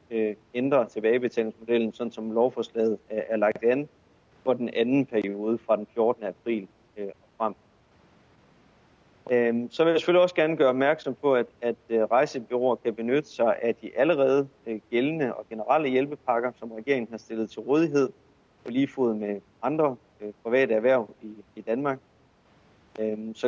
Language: Danish